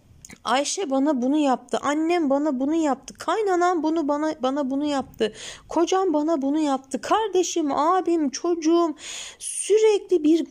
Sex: female